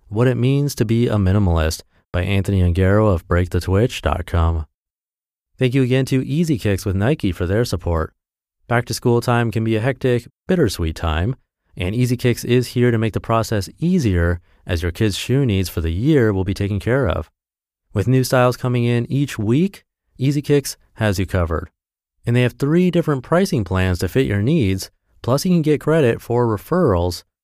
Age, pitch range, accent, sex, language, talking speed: 30-49, 90-125 Hz, American, male, English, 190 wpm